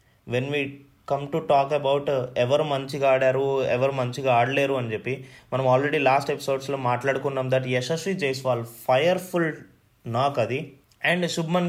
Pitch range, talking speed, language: 130-170 Hz, 170 wpm, Telugu